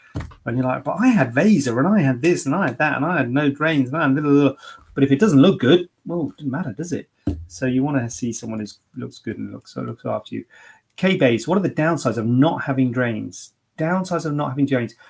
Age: 30-49